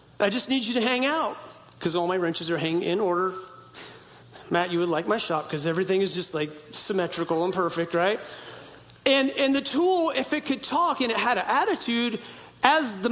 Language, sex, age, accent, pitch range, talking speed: English, male, 40-59, American, 200-280 Hz, 205 wpm